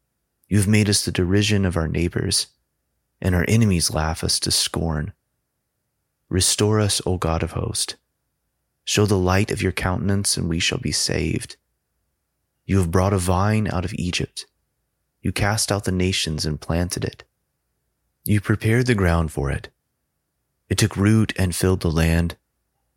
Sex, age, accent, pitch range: male, 30-49, American, 85-100 Hz